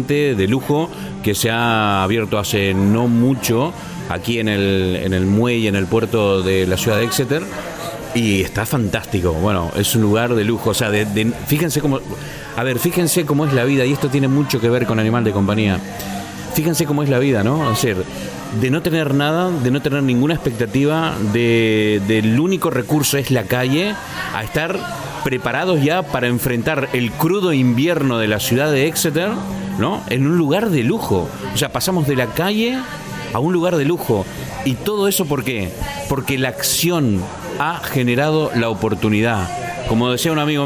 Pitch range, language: 110-150 Hz, Spanish